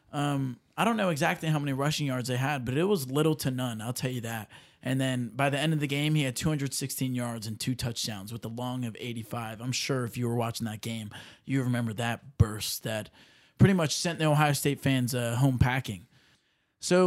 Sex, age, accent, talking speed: male, 20-39, American, 230 wpm